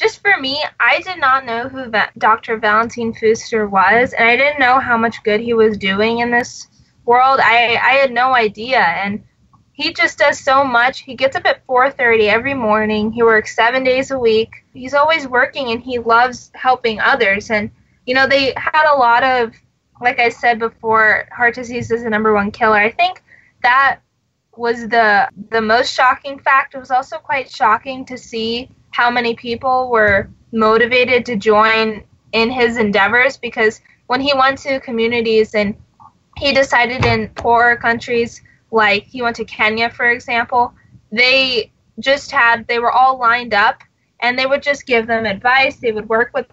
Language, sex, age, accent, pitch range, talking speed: English, female, 20-39, American, 220-260 Hz, 180 wpm